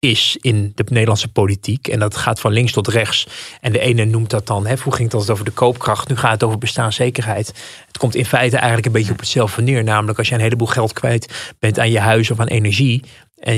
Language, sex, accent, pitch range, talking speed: Dutch, male, Dutch, 110-125 Hz, 240 wpm